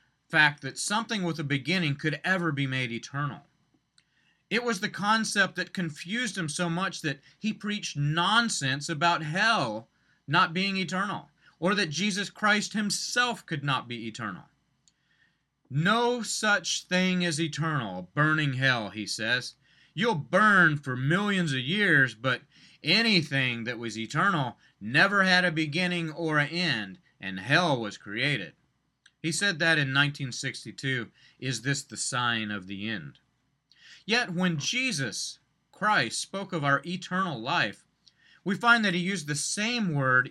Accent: American